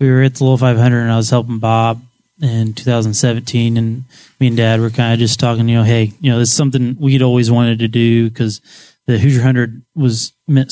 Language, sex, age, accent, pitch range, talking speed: English, male, 20-39, American, 110-125 Hz, 225 wpm